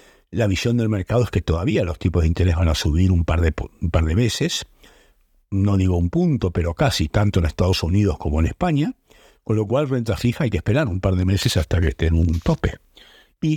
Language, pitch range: Spanish, 85-110 Hz